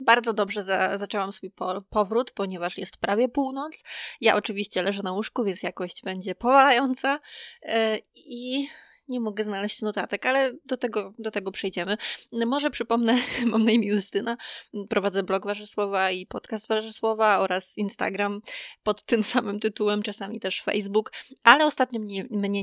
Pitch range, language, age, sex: 200-235 Hz, Polish, 20-39, female